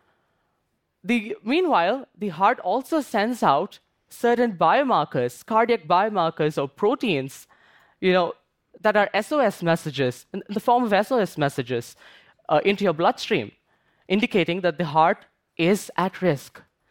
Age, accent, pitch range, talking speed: 10-29, Indian, 170-225 Hz, 125 wpm